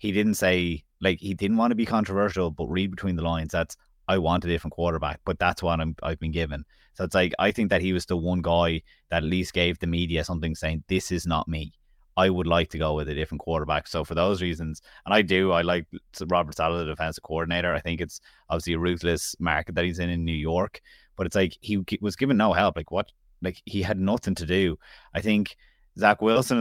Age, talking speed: 30-49, 240 wpm